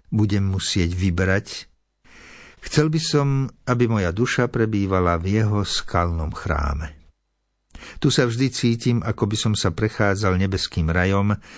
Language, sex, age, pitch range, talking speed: Slovak, male, 60-79, 90-120 Hz, 130 wpm